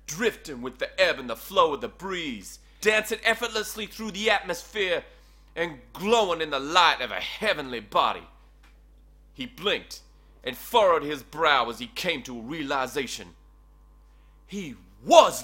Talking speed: 150 wpm